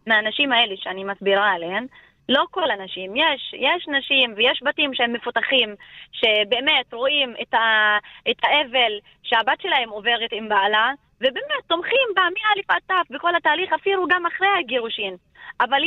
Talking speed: 150 wpm